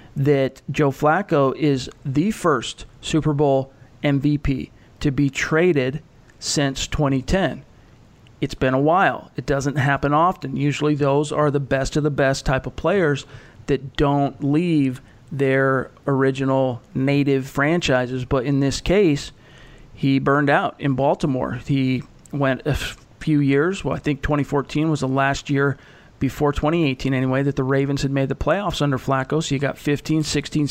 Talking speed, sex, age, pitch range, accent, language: 155 wpm, male, 40-59, 135-150 Hz, American, English